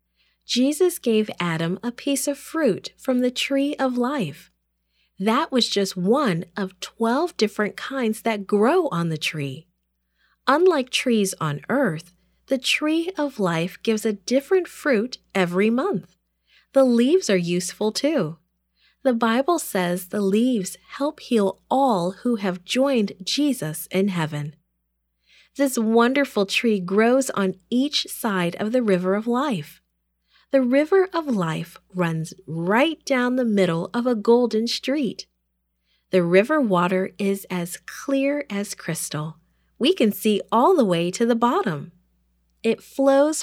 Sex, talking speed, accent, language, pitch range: female, 140 wpm, American, English, 175-260 Hz